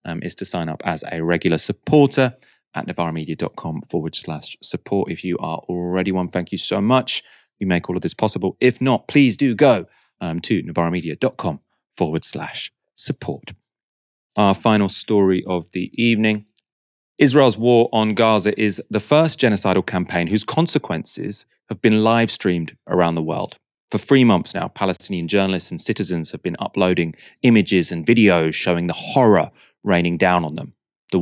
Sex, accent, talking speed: male, British, 165 wpm